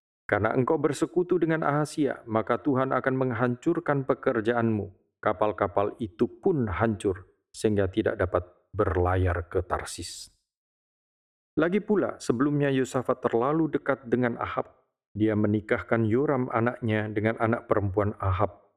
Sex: male